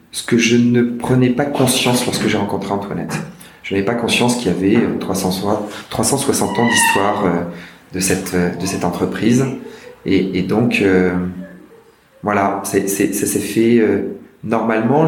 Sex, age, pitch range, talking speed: male, 30-49, 95-120 Hz, 155 wpm